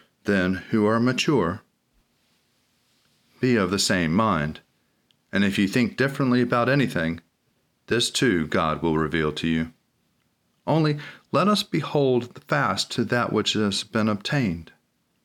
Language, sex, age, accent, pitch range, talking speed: English, male, 40-59, American, 95-120 Hz, 140 wpm